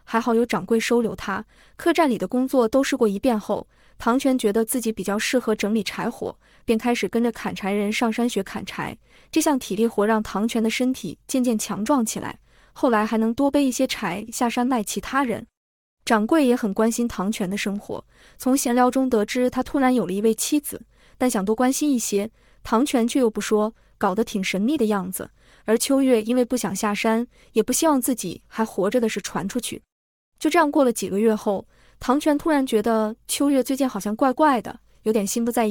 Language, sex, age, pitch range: Chinese, female, 20-39, 215-265 Hz